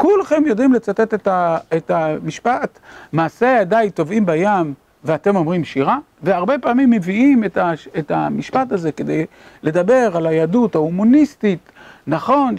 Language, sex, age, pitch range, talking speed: Hebrew, male, 50-69, 175-240 Hz, 115 wpm